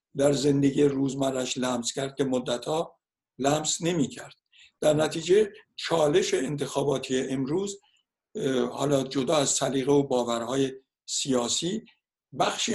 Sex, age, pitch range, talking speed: male, 60-79, 130-150 Hz, 110 wpm